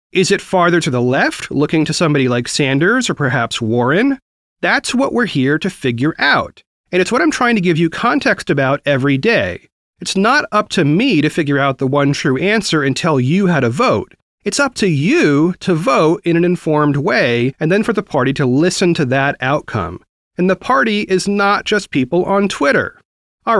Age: 30-49